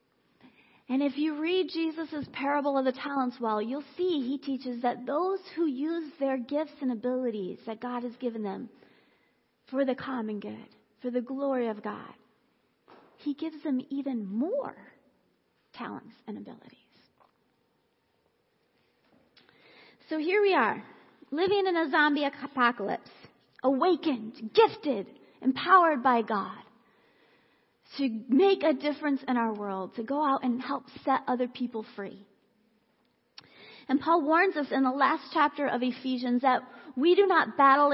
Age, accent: 40-59, American